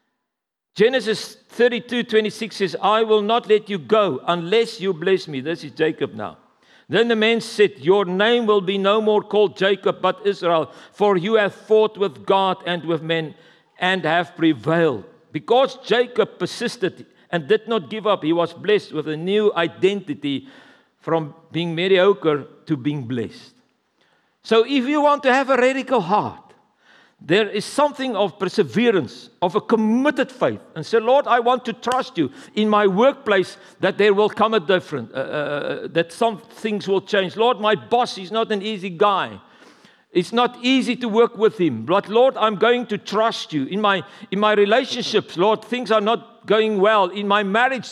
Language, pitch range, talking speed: English, 180-230 Hz, 180 wpm